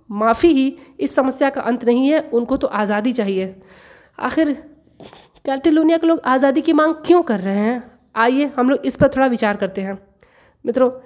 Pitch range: 250-305 Hz